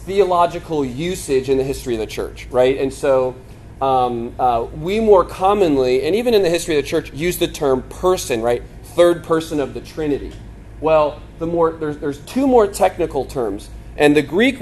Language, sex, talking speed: English, male, 190 wpm